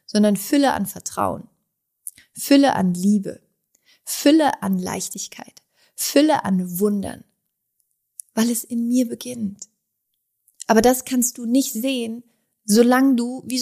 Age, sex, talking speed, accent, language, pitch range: 30-49, female, 120 wpm, German, German, 195-235 Hz